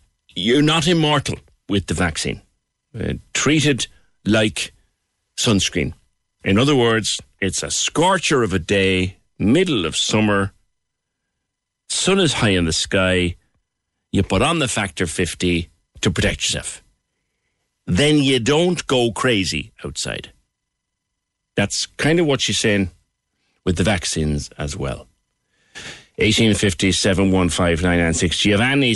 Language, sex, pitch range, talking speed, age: English, male, 95-115 Hz, 115 wpm, 60-79